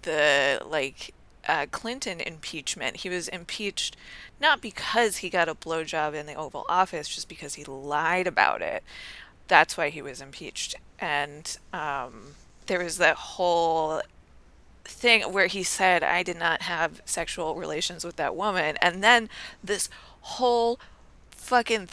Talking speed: 145 wpm